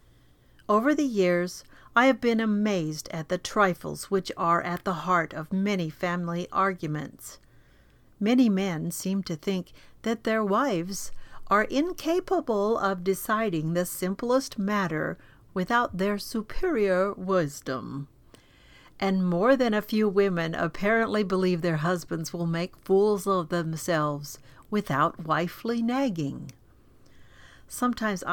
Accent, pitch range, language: American, 165-210 Hz, English